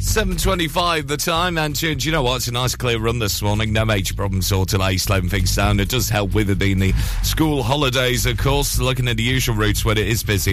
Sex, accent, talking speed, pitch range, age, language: male, British, 250 wpm, 95-120 Hz, 30-49, English